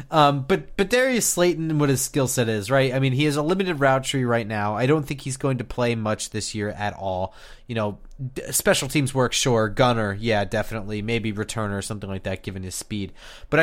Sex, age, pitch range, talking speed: male, 30-49, 105-140 Hz, 240 wpm